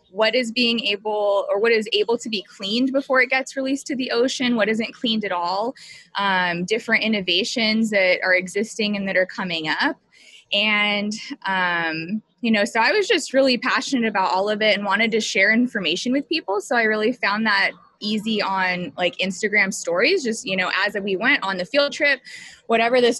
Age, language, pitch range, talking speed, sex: 20-39, English, 200-260 Hz, 200 wpm, female